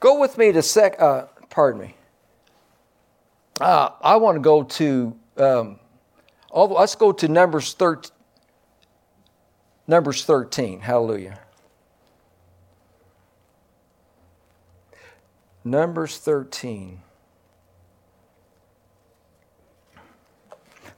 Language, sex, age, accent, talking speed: English, male, 60-79, American, 75 wpm